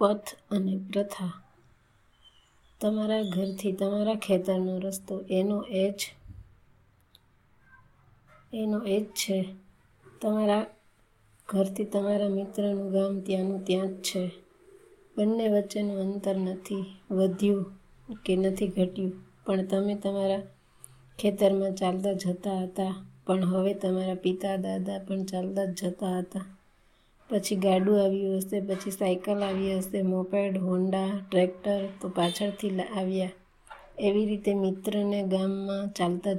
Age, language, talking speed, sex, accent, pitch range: 20-39, Gujarati, 80 wpm, female, native, 185-200 Hz